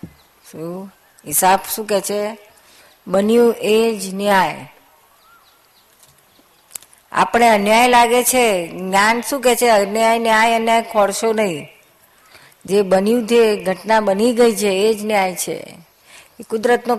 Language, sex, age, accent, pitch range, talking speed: Gujarati, female, 50-69, native, 195-230 Hz, 110 wpm